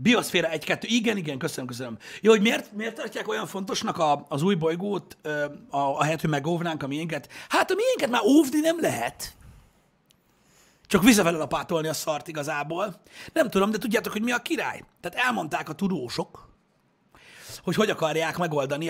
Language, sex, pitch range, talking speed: Hungarian, male, 150-215 Hz, 165 wpm